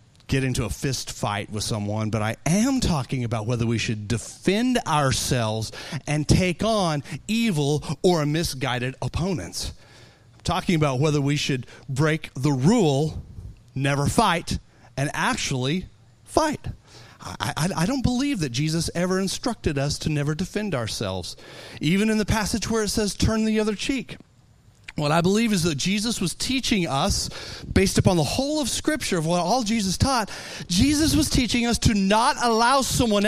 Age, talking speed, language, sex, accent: 40-59, 165 wpm, English, male, American